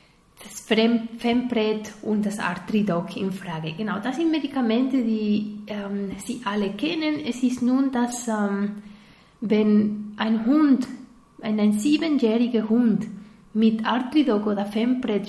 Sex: female